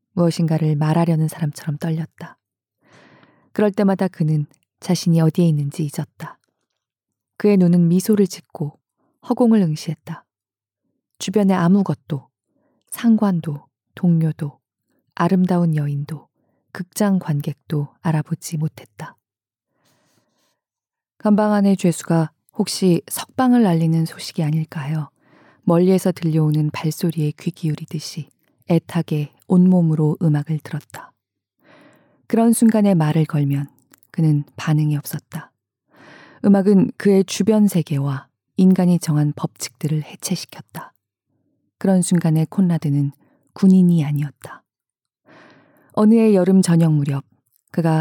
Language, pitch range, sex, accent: Korean, 150-190 Hz, female, native